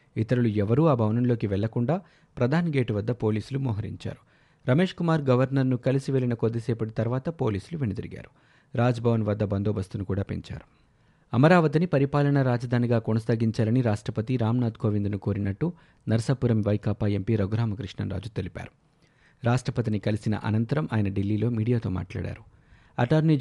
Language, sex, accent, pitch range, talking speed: Telugu, male, native, 110-135 Hz, 110 wpm